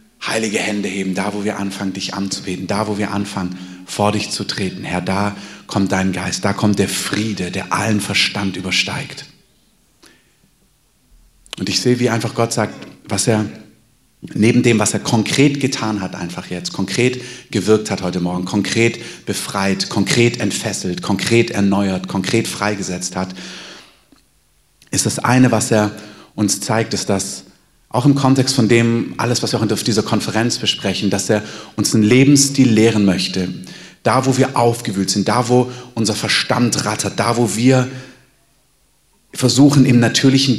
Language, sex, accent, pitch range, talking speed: German, male, German, 100-125 Hz, 160 wpm